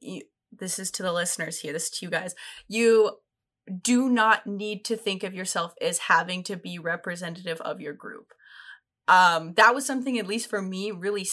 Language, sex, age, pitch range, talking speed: English, female, 10-29, 180-230 Hz, 195 wpm